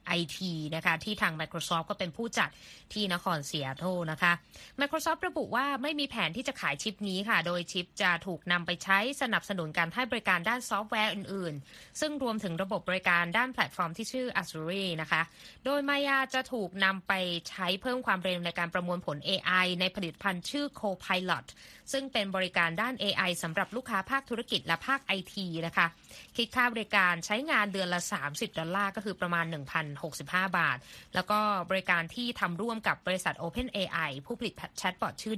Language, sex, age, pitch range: Thai, female, 20-39, 175-220 Hz